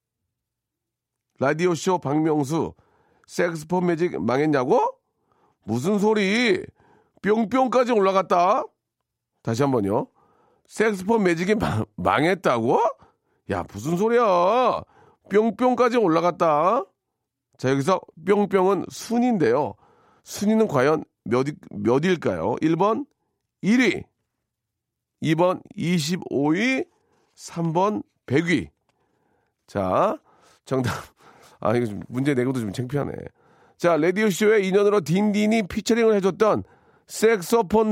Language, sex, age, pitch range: Korean, male, 40-59, 145-210 Hz